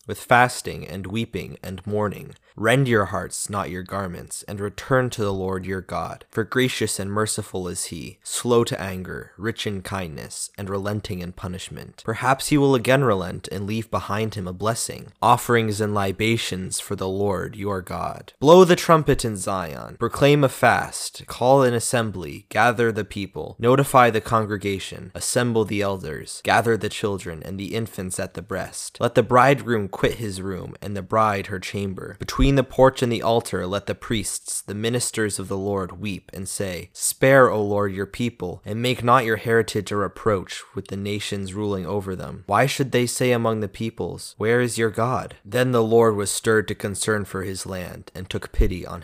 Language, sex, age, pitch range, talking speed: English, male, 20-39, 95-120 Hz, 190 wpm